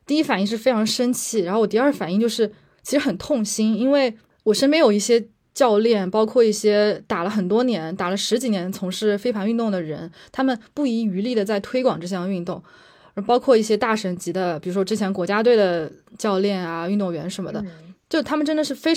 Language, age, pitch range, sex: Chinese, 20-39, 195-245 Hz, female